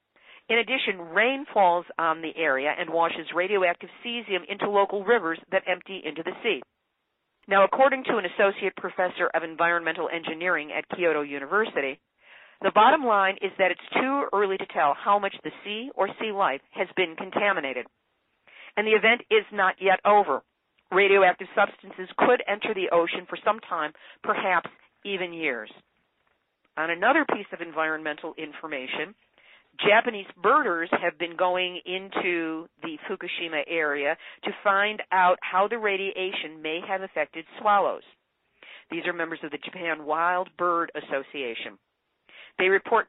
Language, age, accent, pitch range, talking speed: English, 50-69, American, 170-200 Hz, 150 wpm